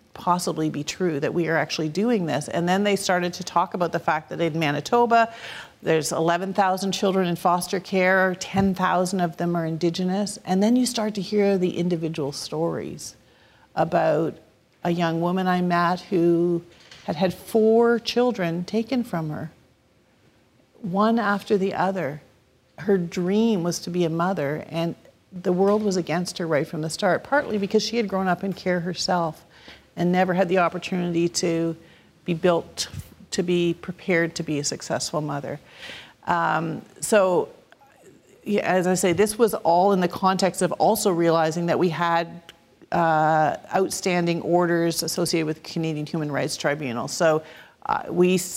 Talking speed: 160 wpm